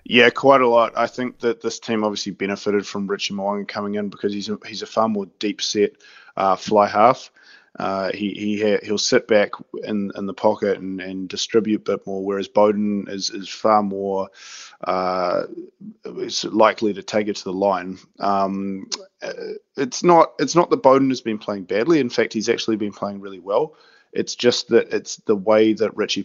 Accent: Australian